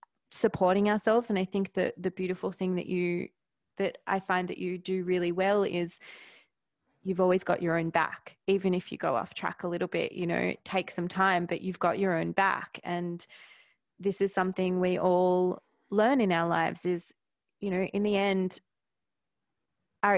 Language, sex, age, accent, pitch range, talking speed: English, female, 20-39, Australian, 170-195 Hz, 190 wpm